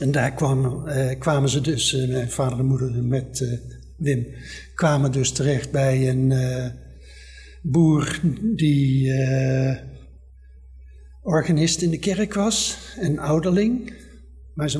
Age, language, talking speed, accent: 60-79, Dutch, 130 wpm, Dutch